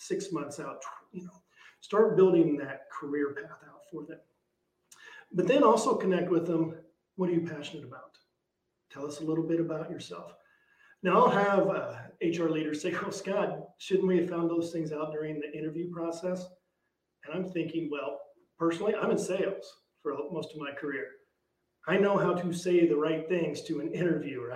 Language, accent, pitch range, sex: English, American, 150-185 Hz, male